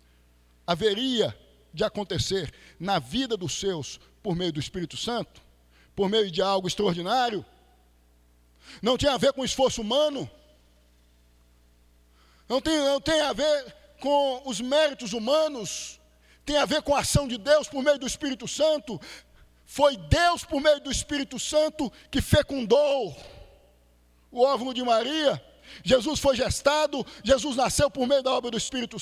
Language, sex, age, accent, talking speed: Portuguese, male, 50-69, Brazilian, 145 wpm